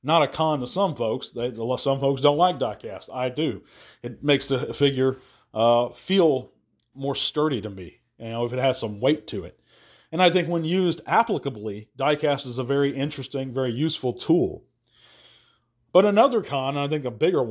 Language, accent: English, American